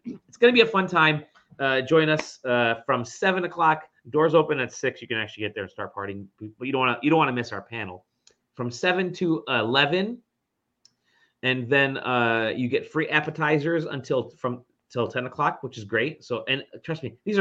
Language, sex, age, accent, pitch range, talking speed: English, male, 30-49, American, 115-150 Hz, 205 wpm